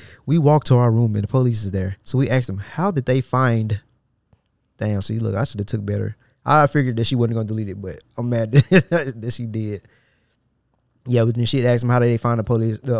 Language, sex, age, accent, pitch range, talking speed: English, male, 20-39, American, 115-130 Hz, 245 wpm